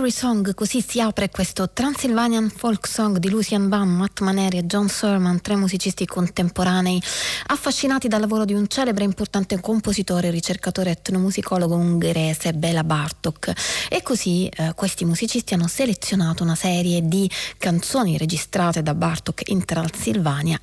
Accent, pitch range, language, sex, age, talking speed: native, 170-205 Hz, Italian, female, 30-49, 145 wpm